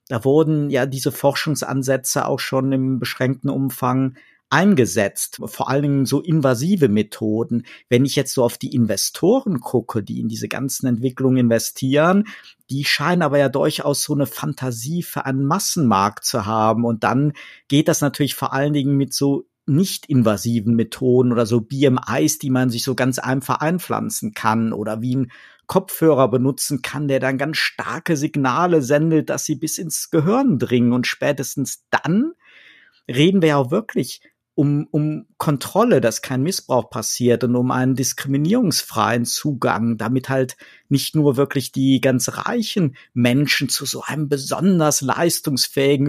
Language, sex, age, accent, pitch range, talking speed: German, male, 50-69, German, 125-150 Hz, 155 wpm